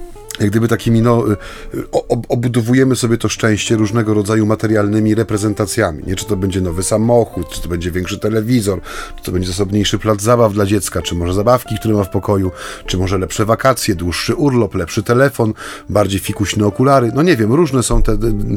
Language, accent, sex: Polish, native, male